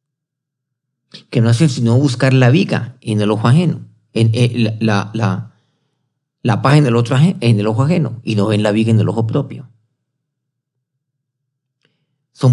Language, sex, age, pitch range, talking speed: Spanish, male, 40-59, 120-140 Hz, 170 wpm